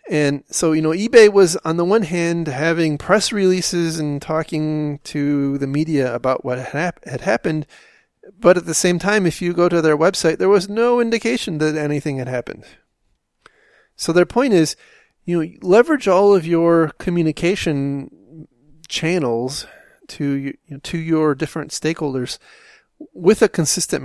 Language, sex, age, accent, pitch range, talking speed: English, male, 30-49, American, 135-175 Hz, 150 wpm